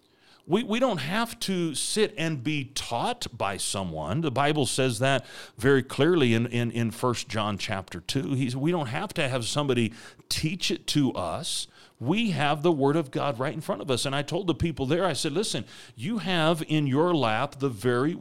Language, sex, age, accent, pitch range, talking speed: English, male, 40-59, American, 130-175 Hz, 205 wpm